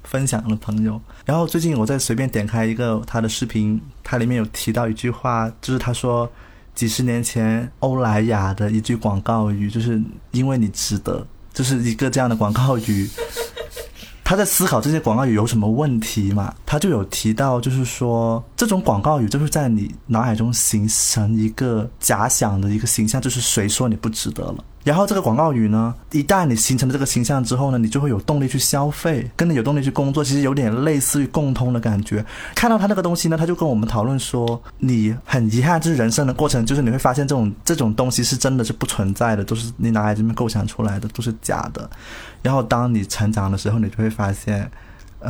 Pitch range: 110-130 Hz